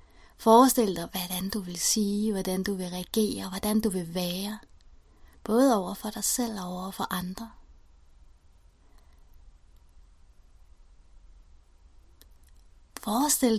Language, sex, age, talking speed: English, female, 30-49, 105 wpm